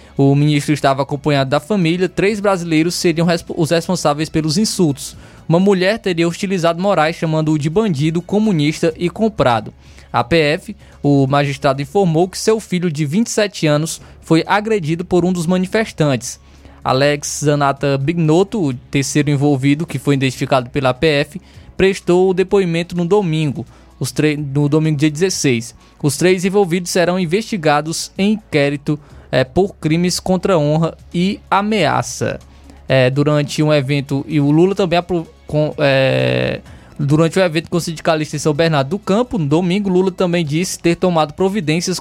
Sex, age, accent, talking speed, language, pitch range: male, 20-39, Brazilian, 155 wpm, Portuguese, 145-185 Hz